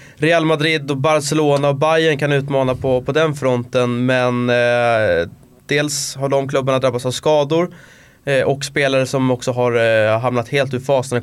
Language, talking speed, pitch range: English, 170 wpm, 115-140 Hz